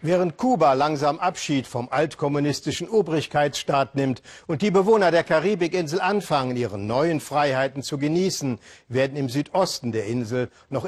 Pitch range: 125-165 Hz